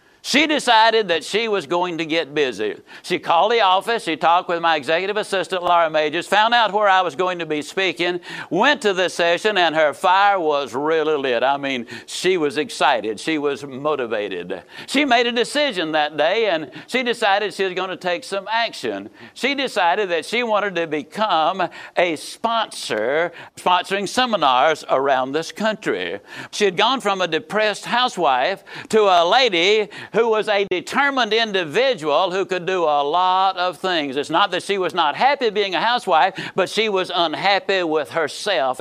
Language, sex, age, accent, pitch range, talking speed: English, male, 60-79, American, 160-230 Hz, 180 wpm